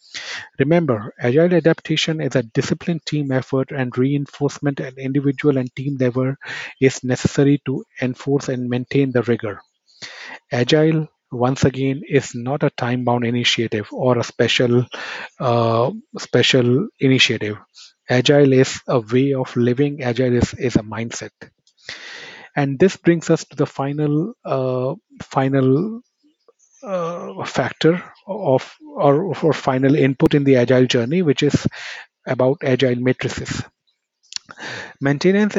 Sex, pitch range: male, 130-150 Hz